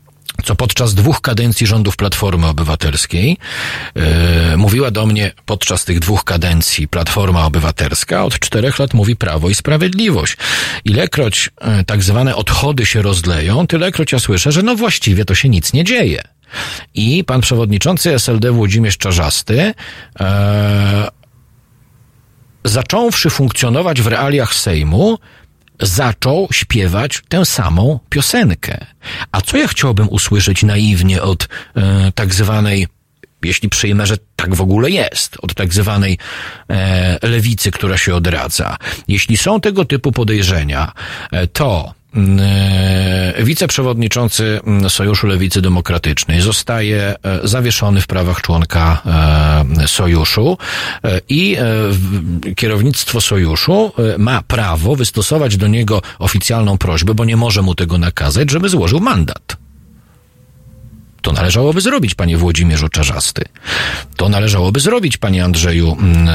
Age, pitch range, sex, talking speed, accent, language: 40-59, 90-120 Hz, male, 115 wpm, native, Polish